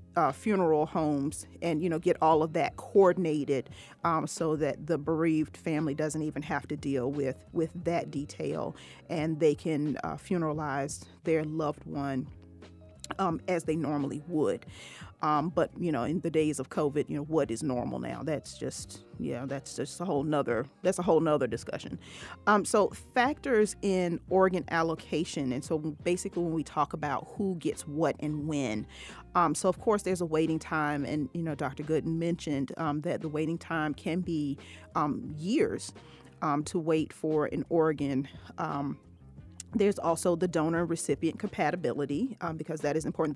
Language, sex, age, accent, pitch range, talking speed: English, female, 40-59, American, 145-170 Hz, 175 wpm